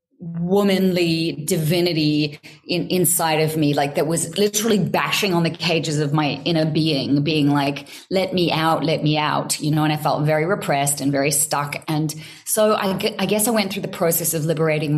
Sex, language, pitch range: female, English, 150-180 Hz